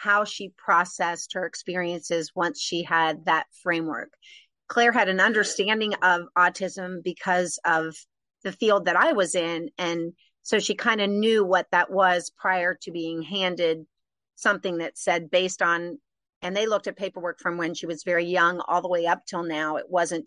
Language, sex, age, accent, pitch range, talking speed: English, female, 40-59, American, 170-190 Hz, 180 wpm